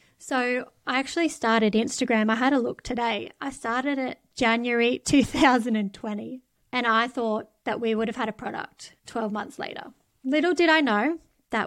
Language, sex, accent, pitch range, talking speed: English, female, Australian, 225-265 Hz, 170 wpm